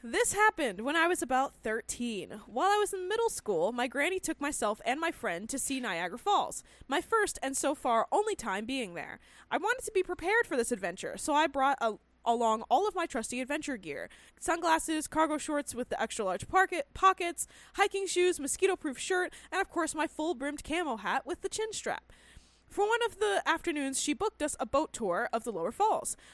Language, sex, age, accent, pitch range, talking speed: English, female, 20-39, American, 255-390 Hz, 205 wpm